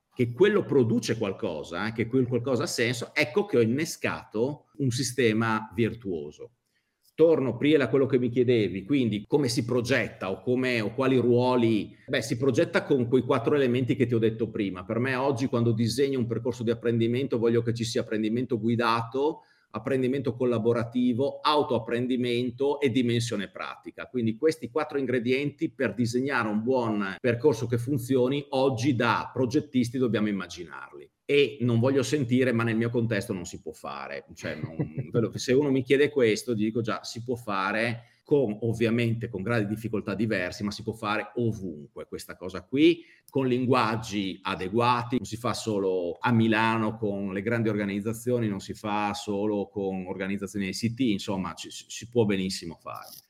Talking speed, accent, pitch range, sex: 165 wpm, native, 110-130 Hz, male